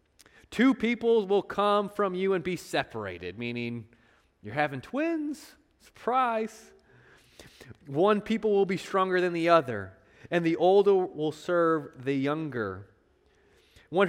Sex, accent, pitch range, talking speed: male, American, 125-190 Hz, 130 wpm